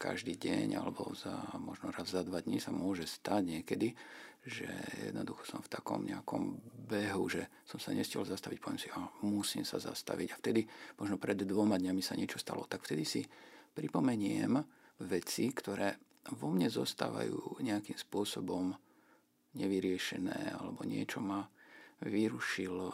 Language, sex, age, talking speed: Slovak, male, 50-69, 145 wpm